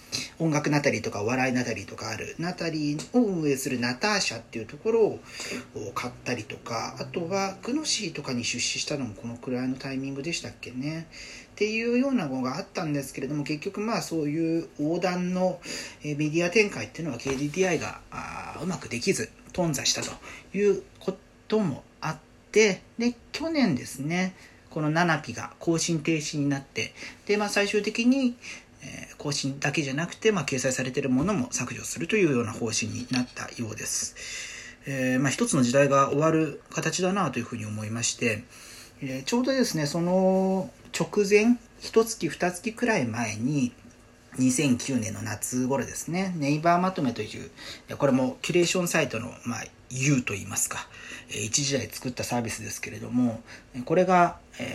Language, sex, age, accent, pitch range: Japanese, male, 40-59, native, 125-180 Hz